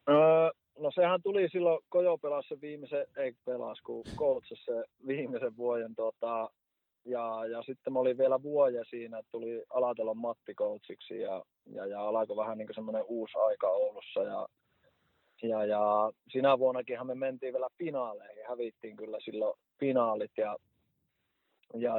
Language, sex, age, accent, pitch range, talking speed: Finnish, male, 20-39, native, 115-155 Hz, 140 wpm